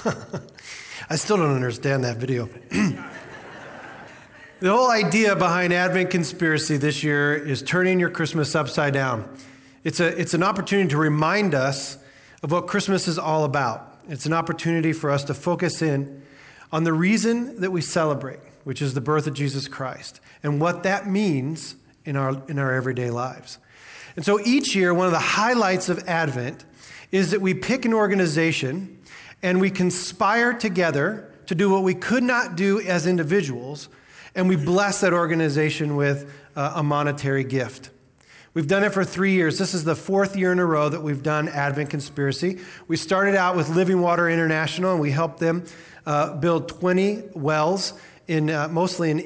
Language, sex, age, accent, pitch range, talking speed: English, male, 40-59, American, 145-185 Hz, 175 wpm